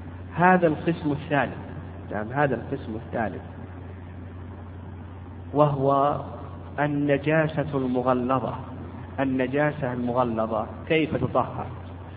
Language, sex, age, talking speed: Arabic, male, 50-69, 70 wpm